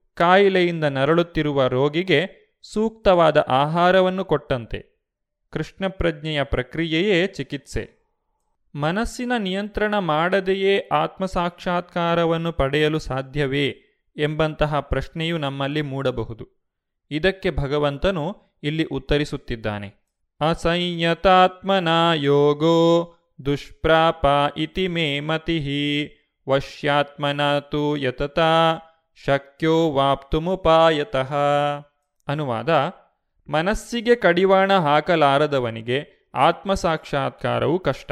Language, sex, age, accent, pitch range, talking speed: Kannada, male, 30-49, native, 140-185 Hz, 60 wpm